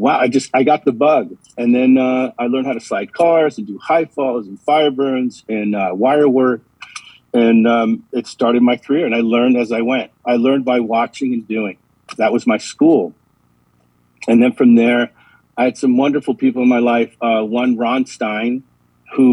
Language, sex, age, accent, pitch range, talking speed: English, male, 50-69, American, 115-130 Hz, 205 wpm